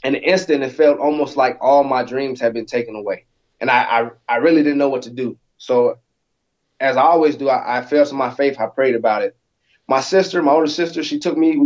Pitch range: 120-145 Hz